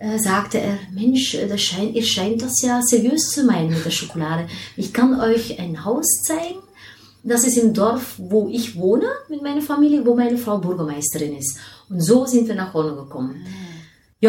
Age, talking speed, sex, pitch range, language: 30-49, 180 wpm, female, 170-230 Hz, German